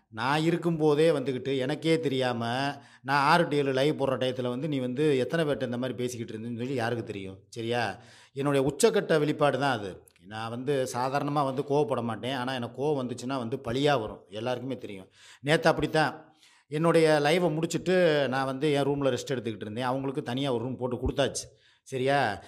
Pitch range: 125-155 Hz